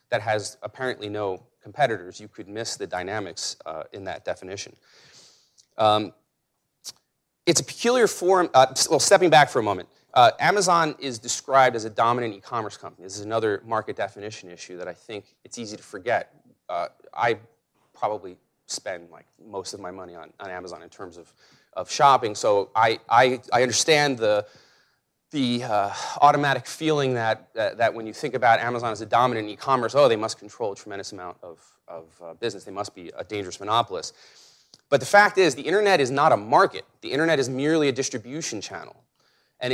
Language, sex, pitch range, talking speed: English, male, 105-145 Hz, 185 wpm